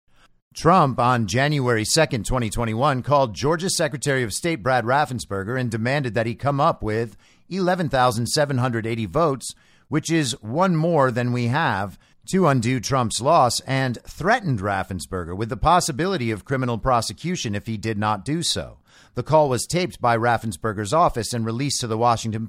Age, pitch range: 50-69, 115-155 Hz